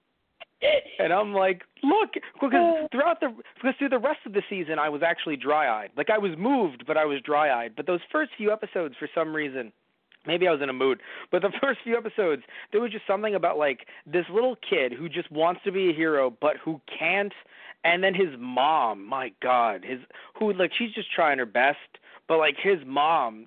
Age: 30-49